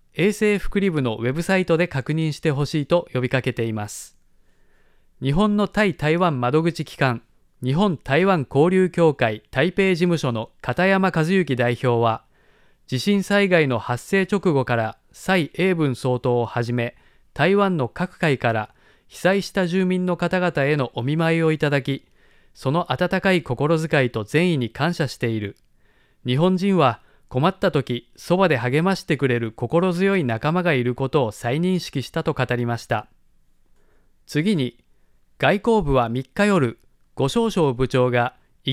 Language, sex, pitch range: Japanese, male, 125-185 Hz